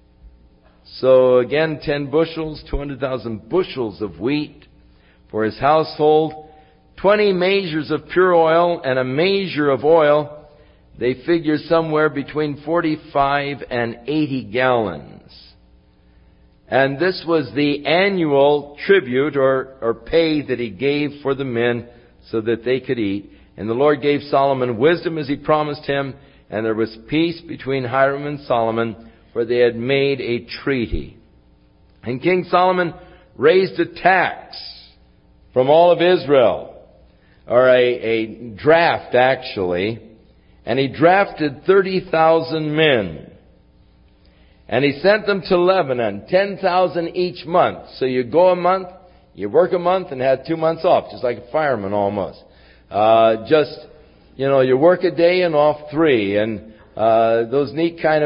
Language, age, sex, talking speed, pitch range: English, 60-79, male, 140 wpm, 115-160 Hz